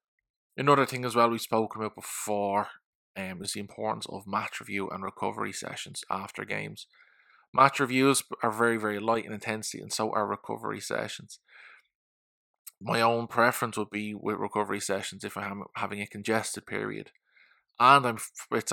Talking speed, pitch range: 155 wpm, 100-115 Hz